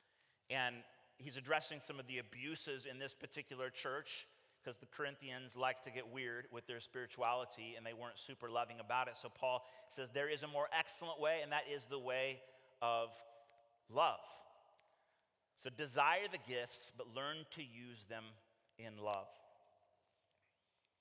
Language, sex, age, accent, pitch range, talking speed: English, male, 30-49, American, 125-160 Hz, 155 wpm